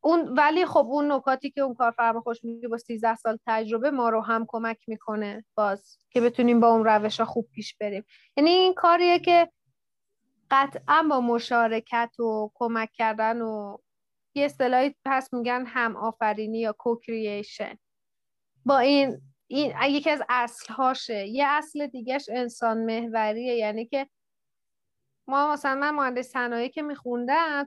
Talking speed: 150 wpm